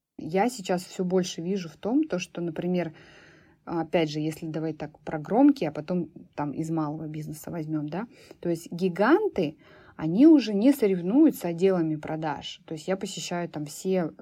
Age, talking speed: 20-39, 165 wpm